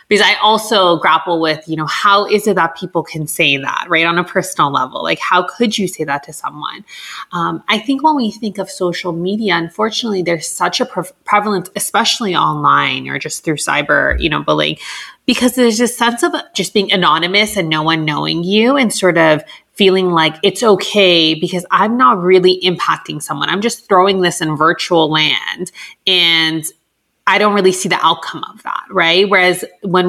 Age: 30-49